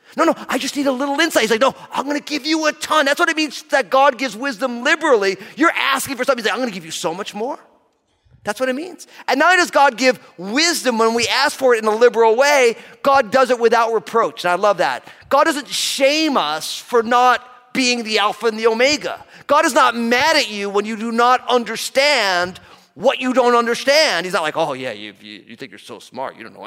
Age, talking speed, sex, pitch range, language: 30-49, 250 wpm, male, 215-285 Hz, English